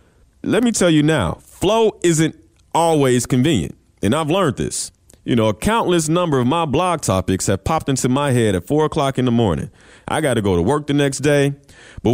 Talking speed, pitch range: 215 wpm, 105-160 Hz